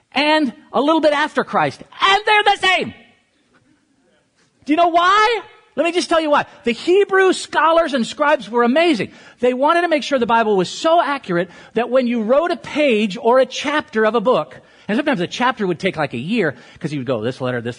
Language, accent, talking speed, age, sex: English, American, 220 wpm, 50-69, male